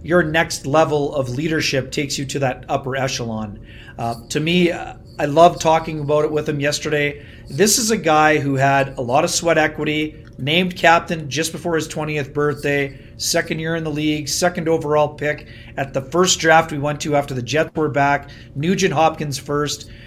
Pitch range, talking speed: 135-170 Hz, 190 wpm